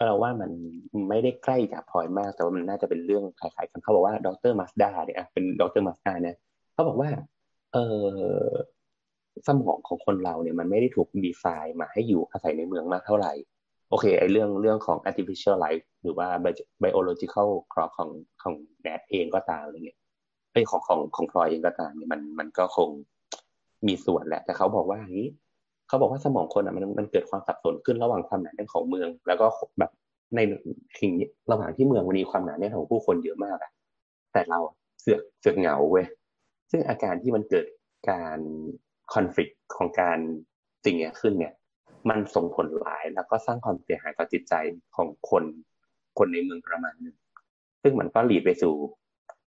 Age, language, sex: 30-49, Thai, male